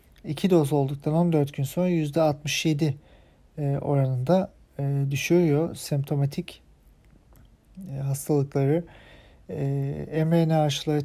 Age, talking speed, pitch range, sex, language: 40-59, 90 wpm, 140-160 Hz, male, German